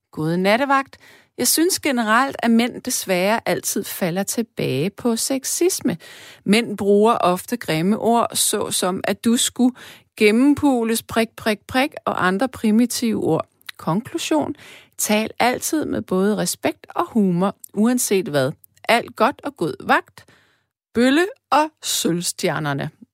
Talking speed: 125 wpm